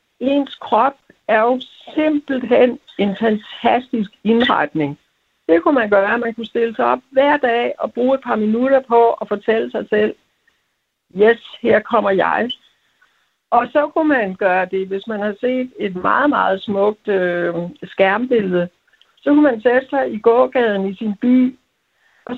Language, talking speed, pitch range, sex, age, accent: Danish, 165 wpm, 210-265 Hz, female, 60-79, native